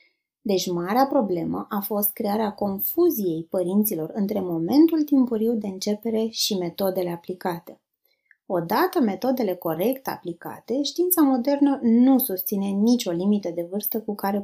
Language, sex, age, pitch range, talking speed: Romanian, female, 20-39, 185-255 Hz, 125 wpm